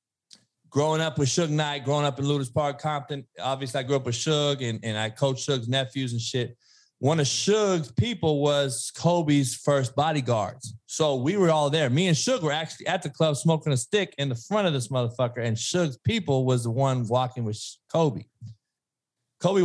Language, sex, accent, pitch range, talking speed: English, male, American, 120-150 Hz, 200 wpm